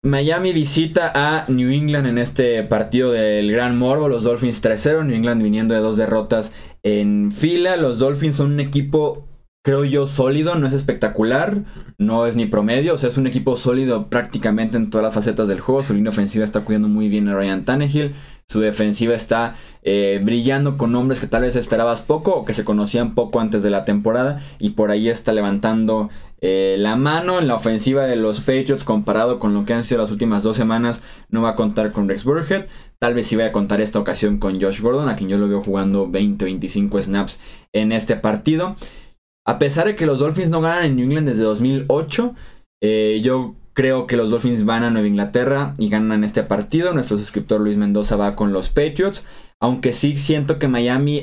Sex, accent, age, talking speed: male, Mexican, 20-39, 205 wpm